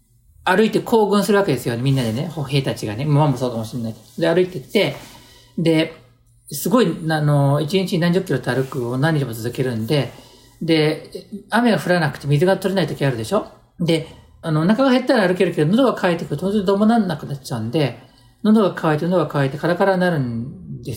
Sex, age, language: male, 40-59, Japanese